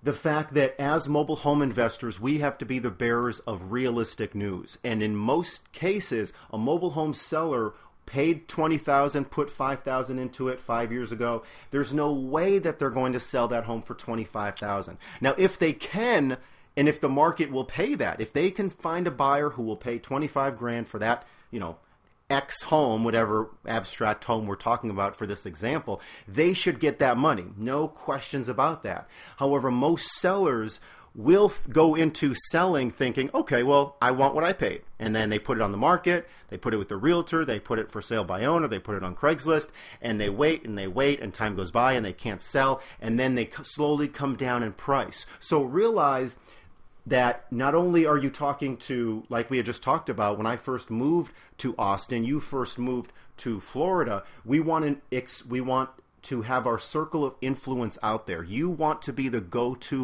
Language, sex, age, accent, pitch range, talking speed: English, male, 40-59, American, 115-145 Hz, 200 wpm